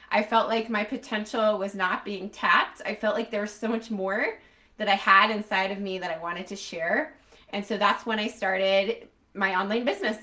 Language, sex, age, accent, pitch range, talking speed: English, female, 20-39, American, 195-235 Hz, 215 wpm